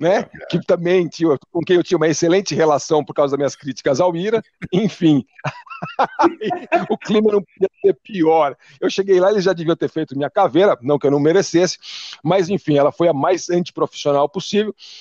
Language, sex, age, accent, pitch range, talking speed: Portuguese, male, 50-69, Brazilian, 145-190 Hz, 190 wpm